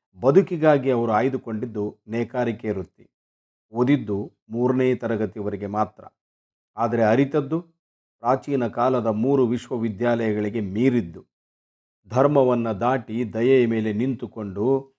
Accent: native